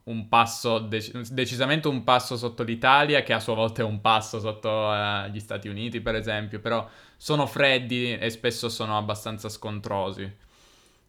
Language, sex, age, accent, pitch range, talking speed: Italian, male, 20-39, native, 110-130 Hz, 155 wpm